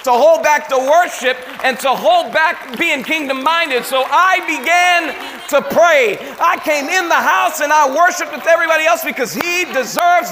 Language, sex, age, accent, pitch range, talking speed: English, male, 40-59, American, 285-355 Hz, 180 wpm